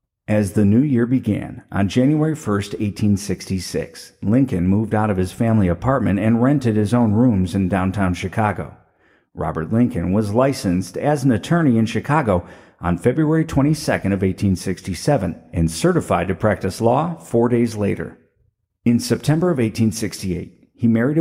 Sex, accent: male, American